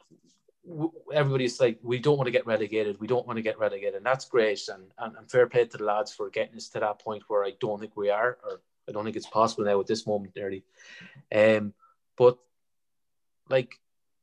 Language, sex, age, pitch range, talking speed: English, male, 30-49, 110-140 Hz, 215 wpm